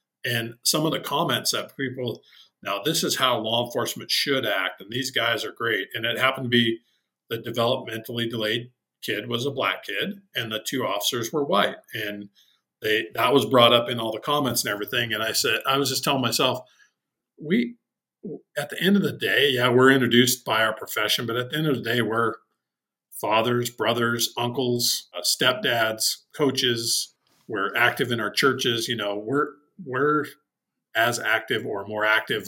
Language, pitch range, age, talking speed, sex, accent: English, 110-135 Hz, 50-69, 185 wpm, male, American